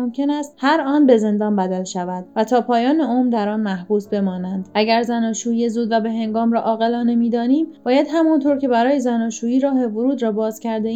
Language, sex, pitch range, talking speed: Persian, female, 220-270 Hz, 195 wpm